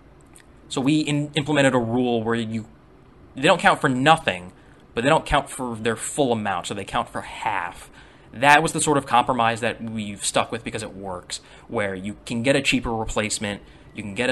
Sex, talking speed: male, 200 wpm